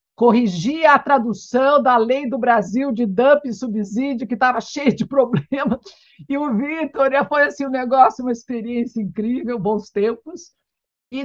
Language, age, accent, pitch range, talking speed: Portuguese, 50-69, Brazilian, 190-255 Hz, 155 wpm